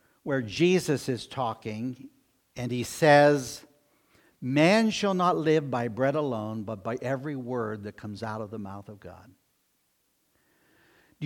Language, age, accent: English, 60-79, American